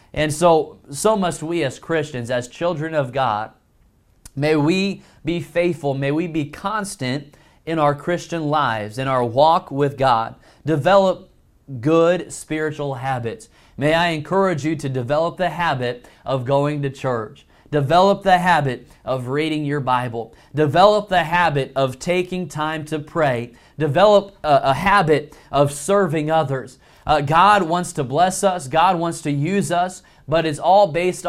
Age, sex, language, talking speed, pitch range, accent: 30-49, male, English, 155 wpm, 140-175 Hz, American